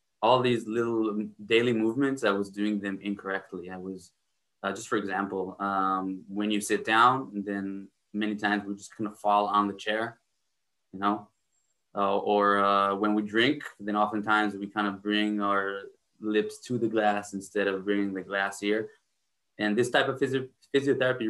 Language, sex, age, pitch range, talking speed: English, male, 20-39, 100-110 Hz, 175 wpm